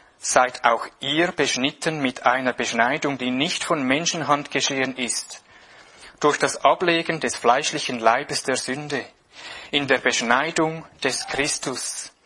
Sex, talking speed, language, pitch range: male, 125 wpm, English, 130-160 Hz